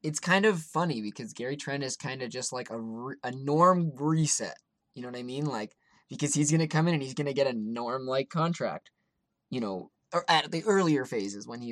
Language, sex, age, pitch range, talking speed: English, male, 20-39, 120-160 Hz, 235 wpm